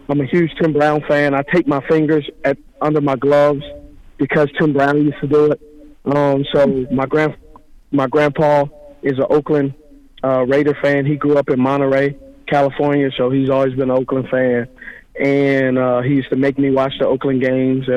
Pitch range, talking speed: 130-145 Hz, 190 wpm